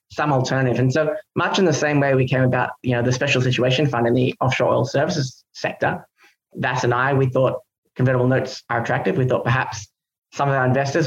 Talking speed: 215 wpm